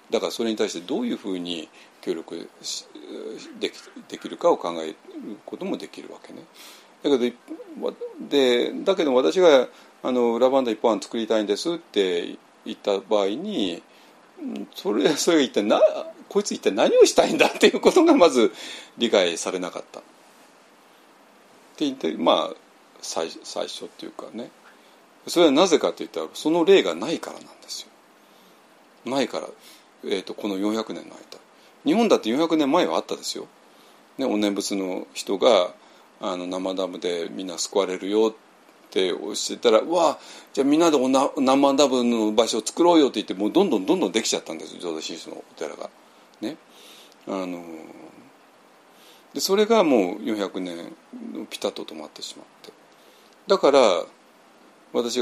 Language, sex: Japanese, male